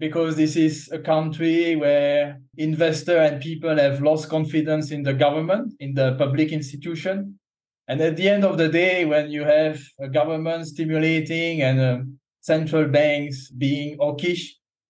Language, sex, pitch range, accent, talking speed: English, male, 140-165 Hz, French, 155 wpm